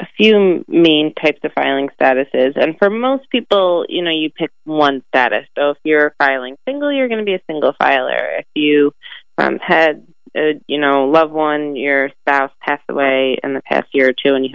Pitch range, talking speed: 140-185 Hz, 205 wpm